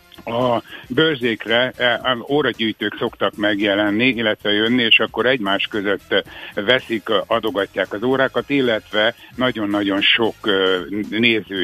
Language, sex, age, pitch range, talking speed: Hungarian, male, 60-79, 100-120 Hz, 100 wpm